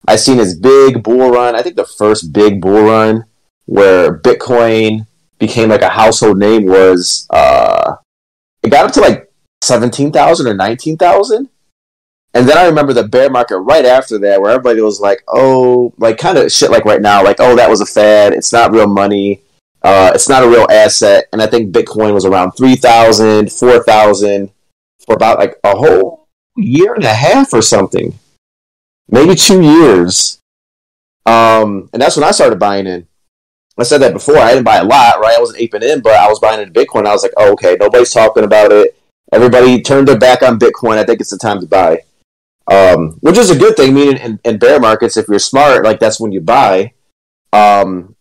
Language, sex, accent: English, male, American